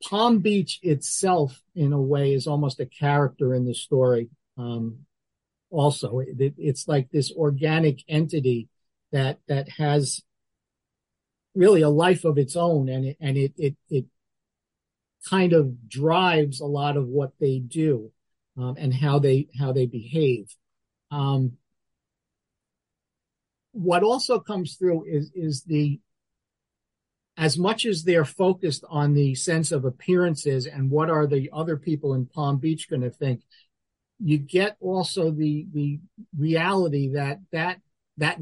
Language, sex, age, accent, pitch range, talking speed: English, male, 50-69, American, 135-160 Hz, 140 wpm